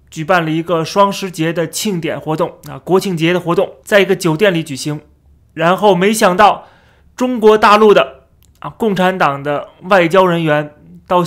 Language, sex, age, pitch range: Chinese, male, 30-49, 170-210 Hz